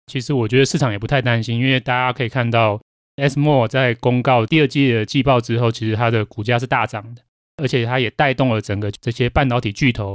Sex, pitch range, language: male, 115-150 Hz, Chinese